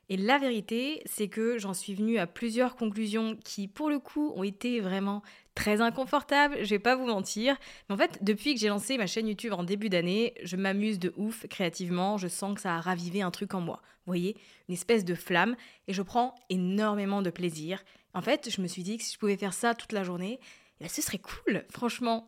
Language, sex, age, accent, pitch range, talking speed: French, female, 20-39, French, 190-235 Hz, 230 wpm